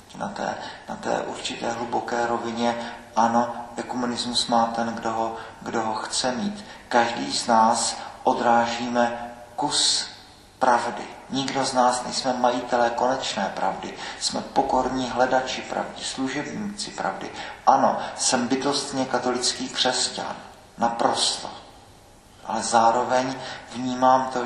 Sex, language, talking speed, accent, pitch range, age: male, Czech, 115 wpm, native, 115-125 Hz, 40-59